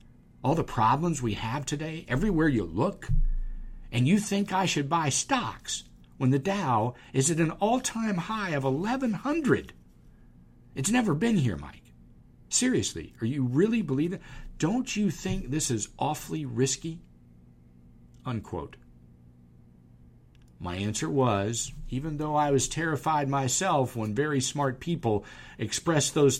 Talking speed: 135 wpm